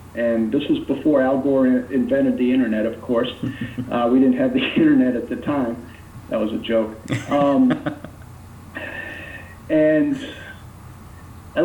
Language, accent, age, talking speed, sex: English, American, 50-69, 140 wpm, male